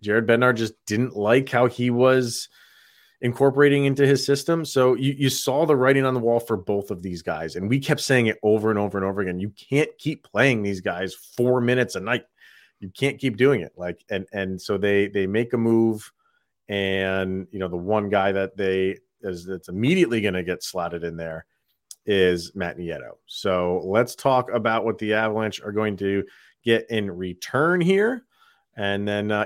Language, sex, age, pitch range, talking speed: English, male, 30-49, 100-130 Hz, 200 wpm